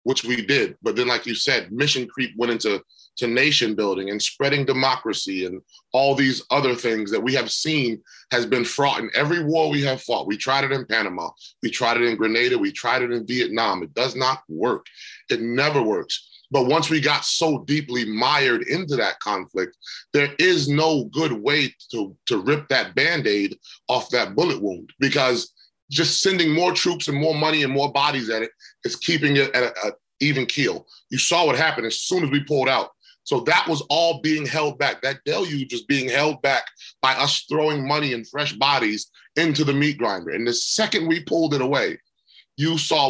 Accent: American